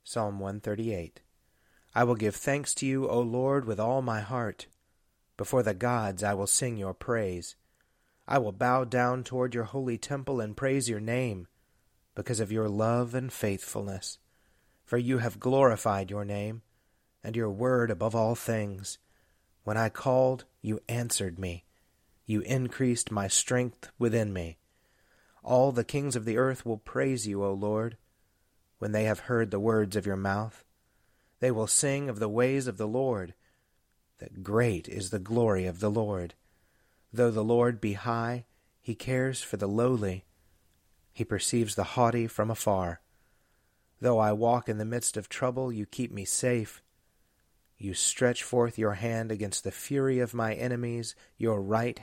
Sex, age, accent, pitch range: male, 30-49, American, 100-125 Hz